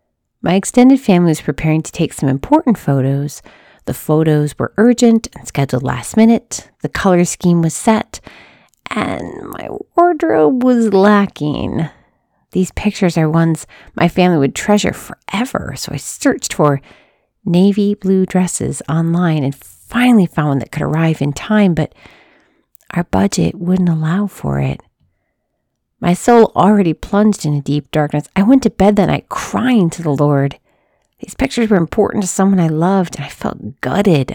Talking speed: 160 wpm